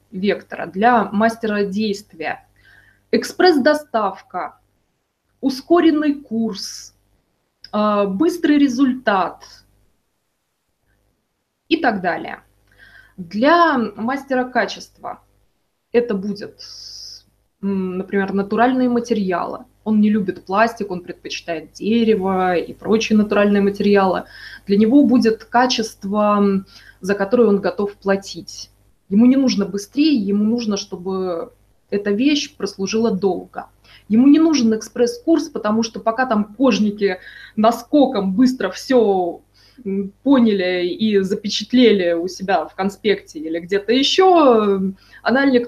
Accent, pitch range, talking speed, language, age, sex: native, 195-245 Hz, 95 wpm, Russian, 20-39, female